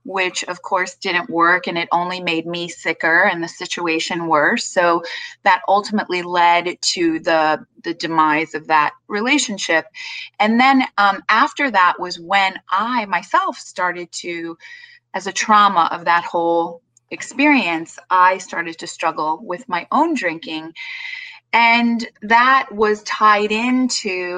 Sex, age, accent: female, 30-49, American